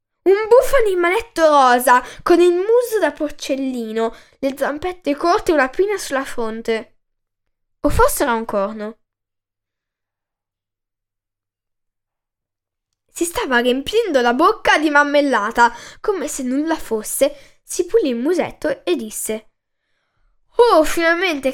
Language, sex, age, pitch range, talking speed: Italian, female, 10-29, 225-335 Hz, 115 wpm